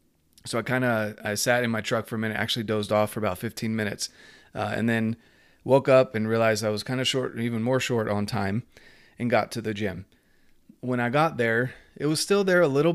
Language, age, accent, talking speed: English, 30-49, American, 235 wpm